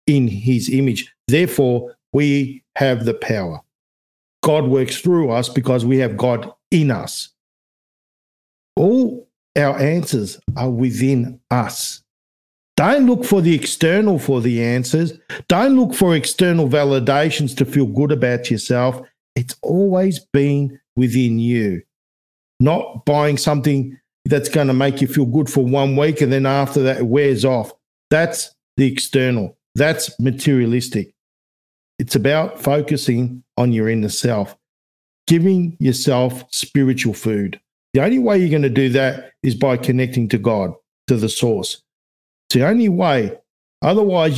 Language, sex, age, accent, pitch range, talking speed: English, male, 50-69, Australian, 120-150 Hz, 140 wpm